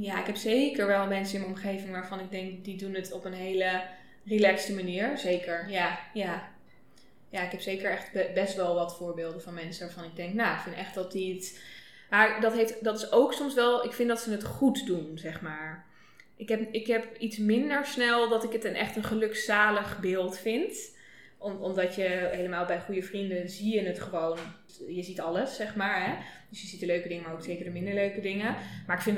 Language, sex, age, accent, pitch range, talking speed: Dutch, female, 20-39, Dutch, 185-210 Hz, 225 wpm